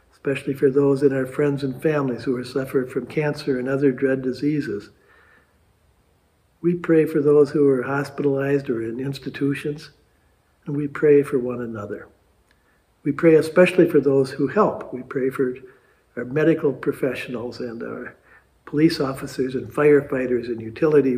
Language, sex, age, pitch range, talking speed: English, male, 60-79, 125-150 Hz, 155 wpm